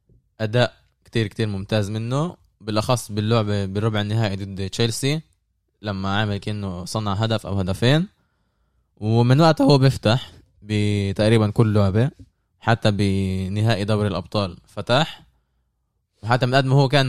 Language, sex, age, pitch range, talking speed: Arabic, male, 20-39, 100-120 Hz, 125 wpm